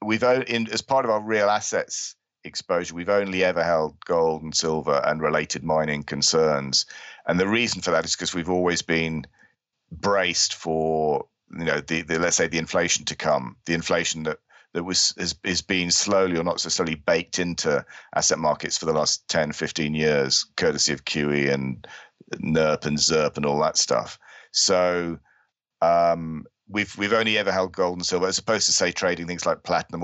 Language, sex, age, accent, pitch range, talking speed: English, male, 40-59, British, 80-95 Hz, 185 wpm